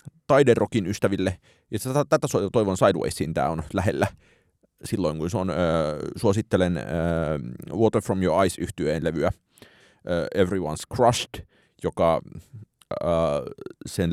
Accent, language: native, Finnish